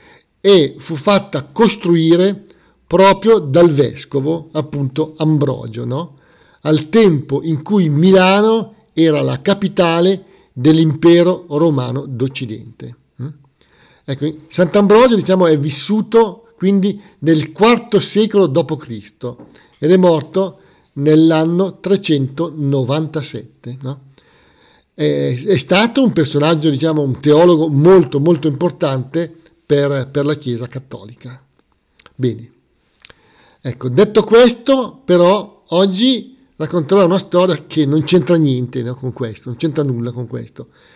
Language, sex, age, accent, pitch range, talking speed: Italian, male, 50-69, native, 145-190 Hz, 105 wpm